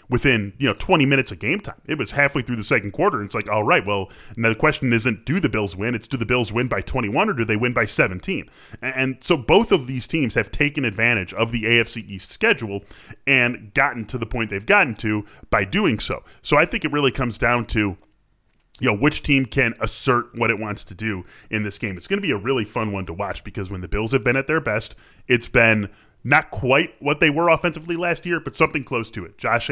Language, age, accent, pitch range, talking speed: English, 10-29, American, 105-125 Hz, 250 wpm